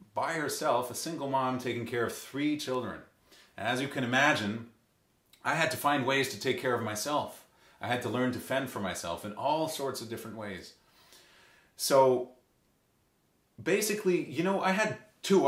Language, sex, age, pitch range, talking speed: English, male, 30-49, 105-130 Hz, 180 wpm